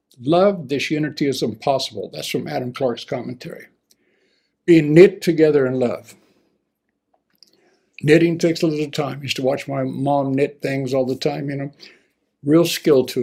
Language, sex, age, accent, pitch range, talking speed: English, male, 60-79, American, 135-175 Hz, 165 wpm